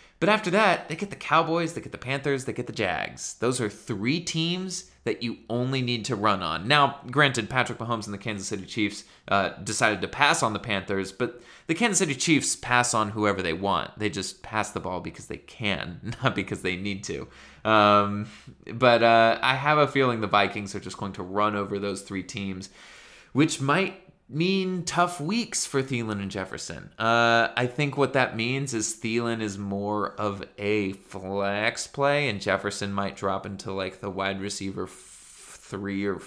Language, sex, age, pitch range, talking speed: English, male, 20-39, 100-135 Hz, 195 wpm